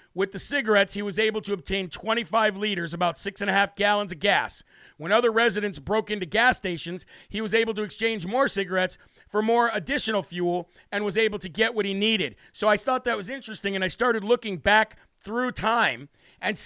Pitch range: 195-225 Hz